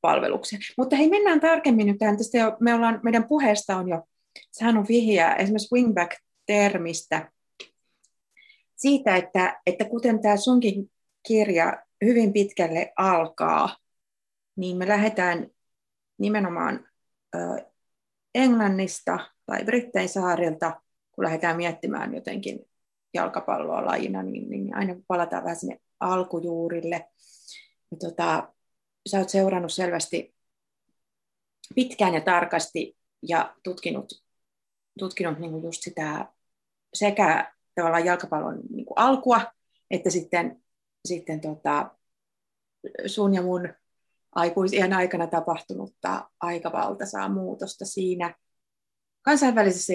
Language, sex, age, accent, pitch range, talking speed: Finnish, female, 30-49, native, 170-225 Hz, 95 wpm